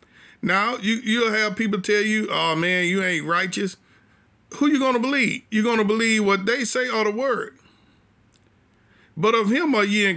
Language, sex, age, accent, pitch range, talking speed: English, male, 50-69, American, 165-220 Hz, 200 wpm